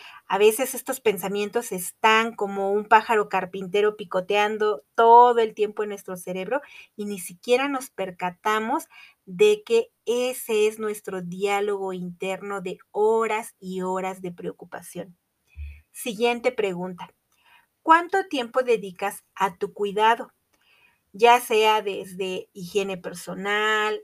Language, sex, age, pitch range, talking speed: Spanish, female, 30-49, 190-230 Hz, 115 wpm